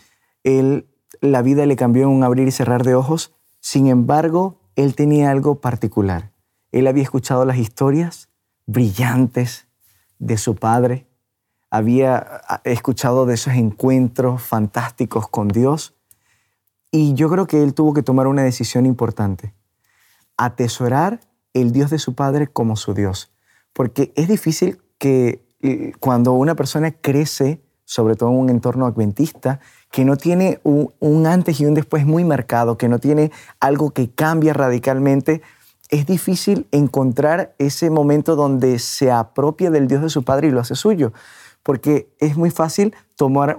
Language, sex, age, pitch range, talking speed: Spanish, male, 20-39, 120-150 Hz, 150 wpm